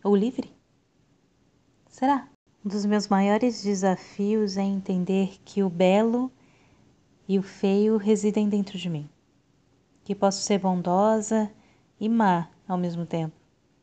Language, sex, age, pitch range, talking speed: Portuguese, female, 20-39, 180-210 Hz, 125 wpm